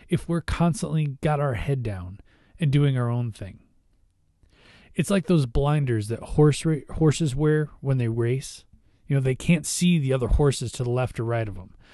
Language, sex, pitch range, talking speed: English, male, 105-150 Hz, 195 wpm